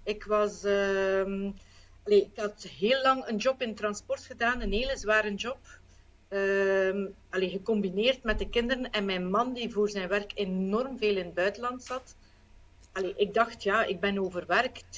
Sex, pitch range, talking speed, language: female, 200-240 Hz, 170 wpm, Dutch